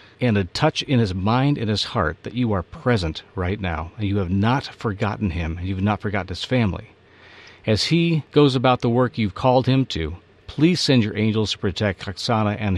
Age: 40-59